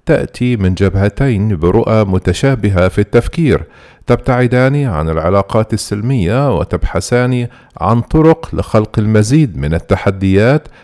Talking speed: 100 wpm